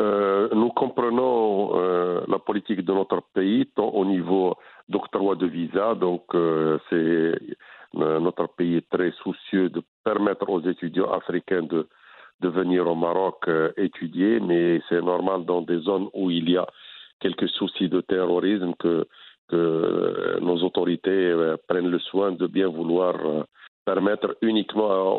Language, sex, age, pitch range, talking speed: French, male, 50-69, 90-105 Hz, 155 wpm